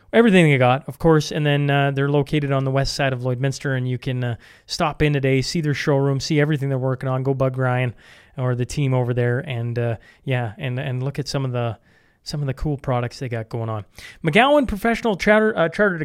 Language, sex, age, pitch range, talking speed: English, male, 30-49, 125-150 Hz, 235 wpm